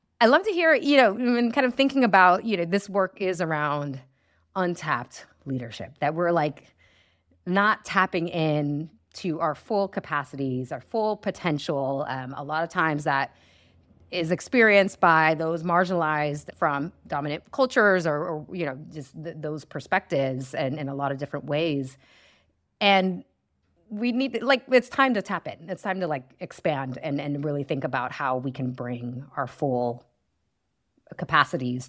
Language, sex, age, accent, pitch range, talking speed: English, female, 30-49, American, 140-195 Hz, 160 wpm